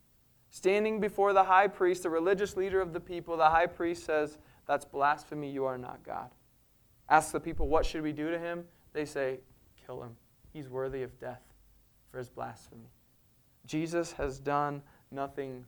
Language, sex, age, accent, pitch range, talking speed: English, male, 20-39, American, 120-170 Hz, 170 wpm